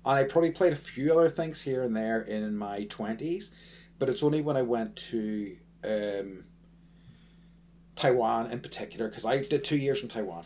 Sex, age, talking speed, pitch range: male, 30-49, 185 wpm, 105-160 Hz